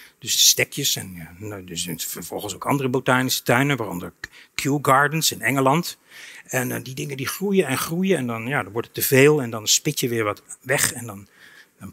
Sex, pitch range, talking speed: male, 135-200 Hz, 195 wpm